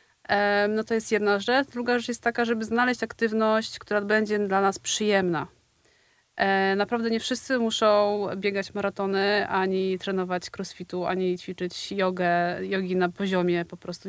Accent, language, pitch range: native, Polish, 190-235 Hz